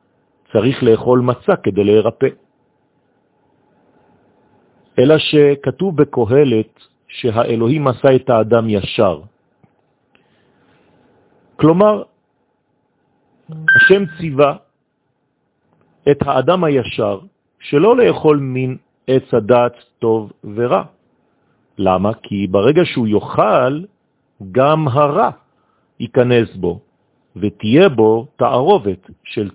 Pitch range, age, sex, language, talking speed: 105-145 Hz, 50-69, male, French, 80 wpm